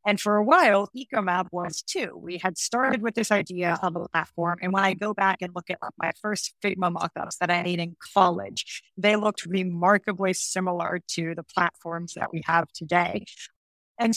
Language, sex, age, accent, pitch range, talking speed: English, female, 30-49, American, 170-205 Hz, 190 wpm